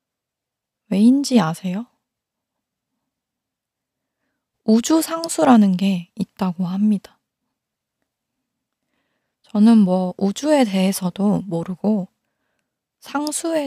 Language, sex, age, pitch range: Korean, female, 20-39, 190-250 Hz